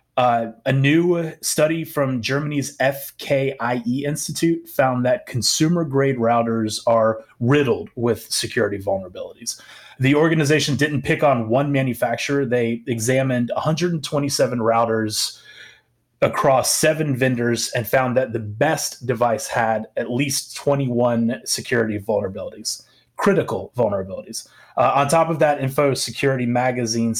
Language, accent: English, American